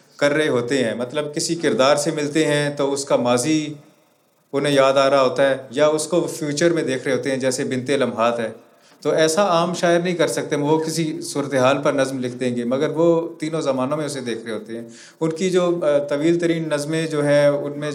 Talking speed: 200 wpm